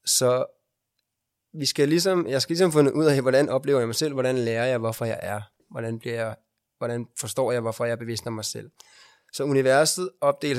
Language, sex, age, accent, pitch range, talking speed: Danish, male, 20-39, native, 115-145 Hz, 195 wpm